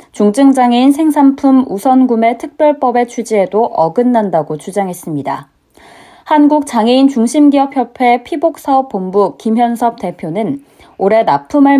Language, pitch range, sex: Korean, 195-250 Hz, female